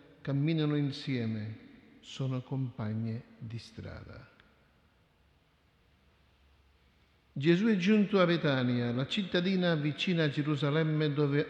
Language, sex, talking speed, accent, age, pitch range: Italian, male, 90 wpm, native, 50-69, 120-165 Hz